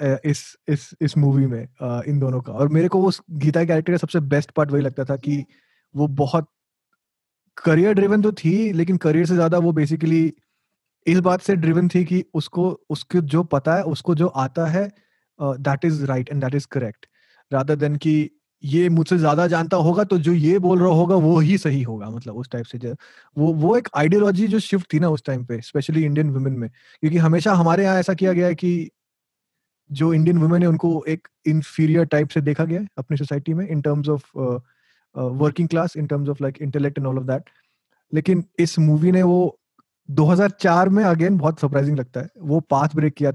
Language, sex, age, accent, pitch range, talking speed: Hindi, male, 30-49, native, 140-175 Hz, 200 wpm